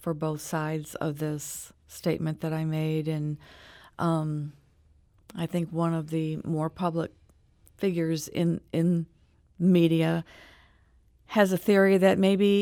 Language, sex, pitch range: English, female, 160-195 Hz